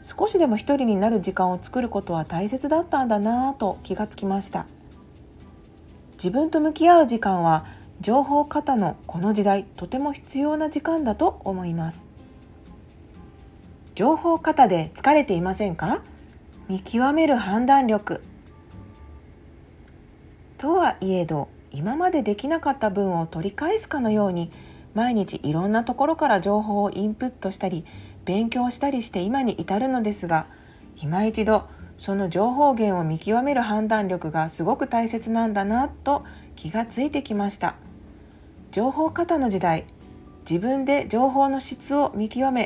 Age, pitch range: 40-59, 175-265 Hz